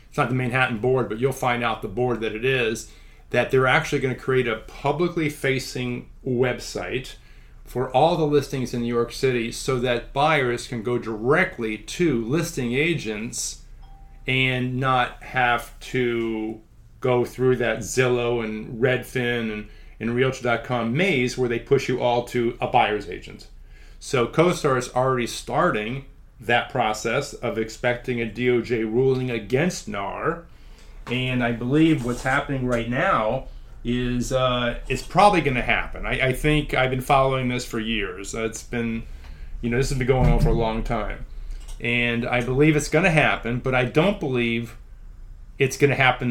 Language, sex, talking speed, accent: English, male, 160 wpm, American